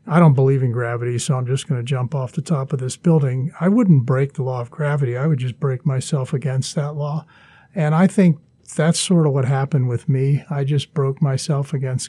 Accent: American